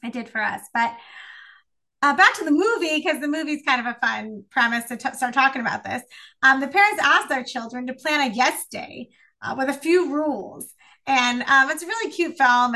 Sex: female